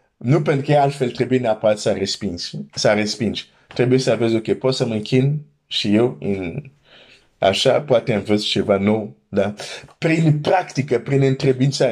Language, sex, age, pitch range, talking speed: Romanian, male, 50-69, 110-140 Hz, 150 wpm